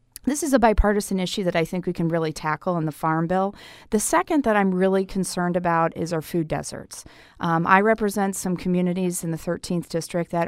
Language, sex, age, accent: English, female, 40-59, American